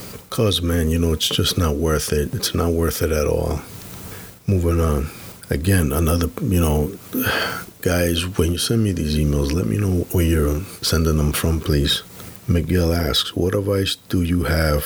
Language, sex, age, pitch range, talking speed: English, male, 50-69, 80-95 Hz, 180 wpm